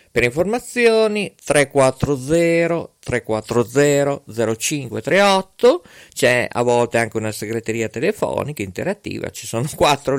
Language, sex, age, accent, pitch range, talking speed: Italian, male, 50-69, native, 120-180 Hz, 80 wpm